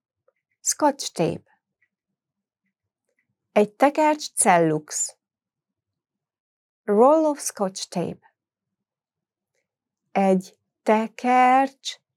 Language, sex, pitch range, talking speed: English, female, 175-230 Hz, 55 wpm